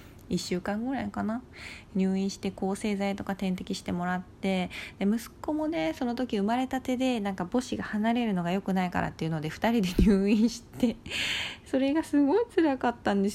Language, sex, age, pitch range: Japanese, female, 20-39, 180-255 Hz